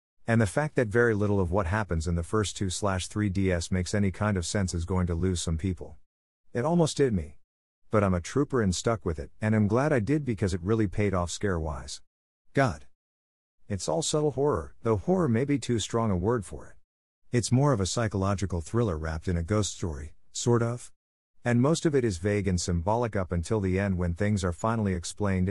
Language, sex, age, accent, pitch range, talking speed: English, male, 50-69, American, 90-120 Hz, 220 wpm